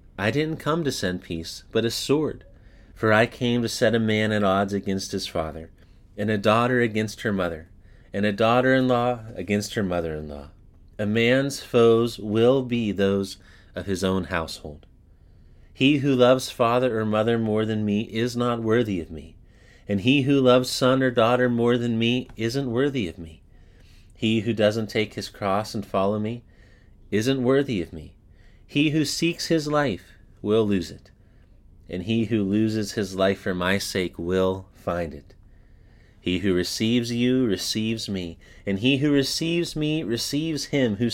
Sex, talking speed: male, 170 wpm